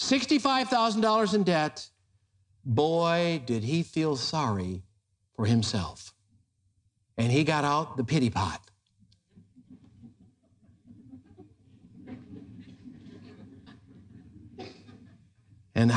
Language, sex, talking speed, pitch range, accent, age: English, male, 65 wpm, 100-150 Hz, American, 60-79